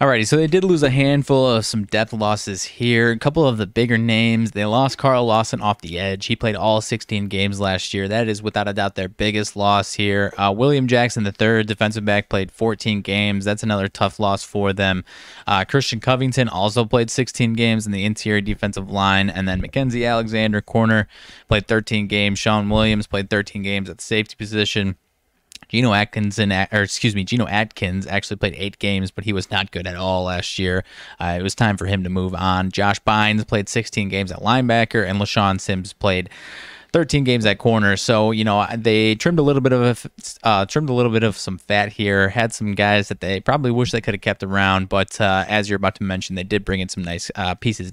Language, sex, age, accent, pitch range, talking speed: English, male, 20-39, American, 100-115 Hz, 220 wpm